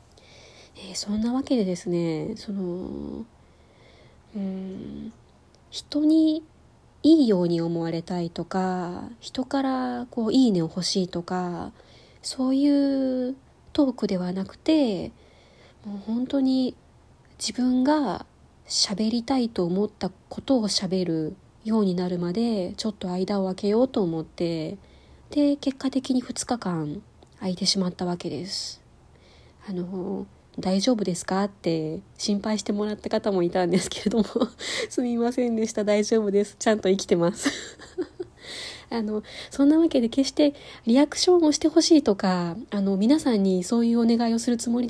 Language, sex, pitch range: Japanese, female, 185-255 Hz